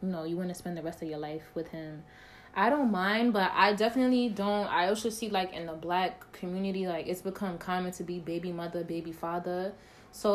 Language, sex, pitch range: English, female, 165-195 Hz